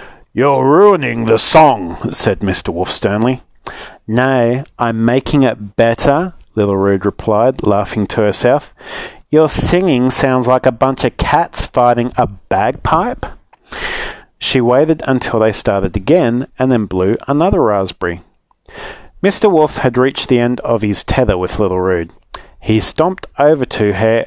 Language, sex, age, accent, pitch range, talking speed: English, male, 40-59, Australian, 110-145 Hz, 145 wpm